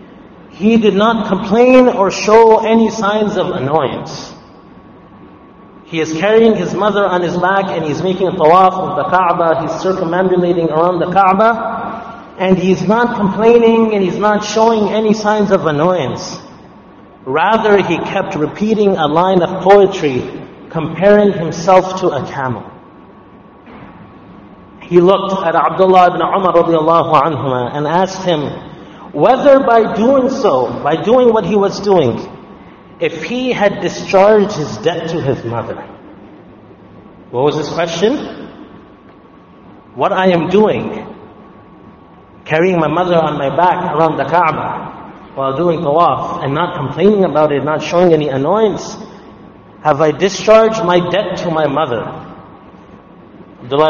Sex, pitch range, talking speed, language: male, 160-210 Hz, 135 wpm, English